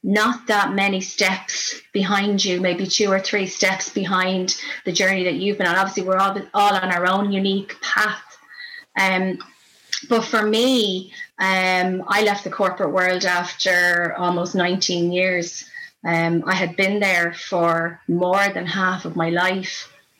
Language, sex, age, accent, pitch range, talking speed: English, female, 30-49, Irish, 175-200 Hz, 155 wpm